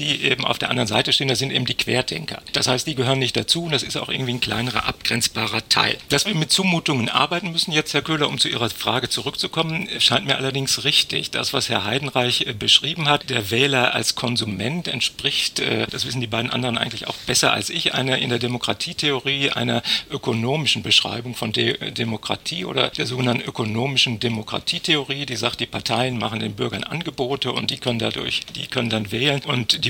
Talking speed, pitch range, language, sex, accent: 200 wpm, 120-140 Hz, German, male, German